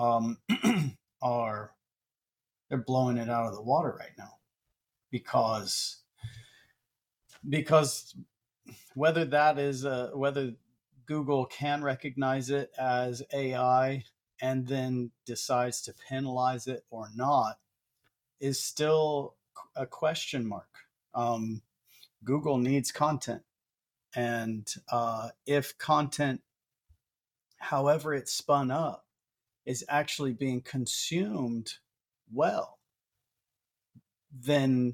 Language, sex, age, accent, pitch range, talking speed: English, male, 40-59, American, 120-140 Hz, 95 wpm